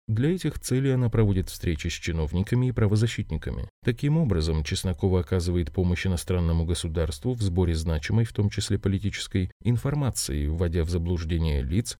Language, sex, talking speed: Russian, male, 145 wpm